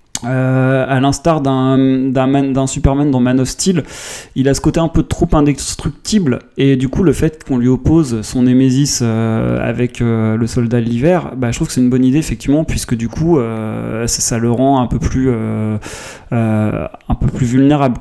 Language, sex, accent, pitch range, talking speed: French, male, French, 115-145 Hz, 210 wpm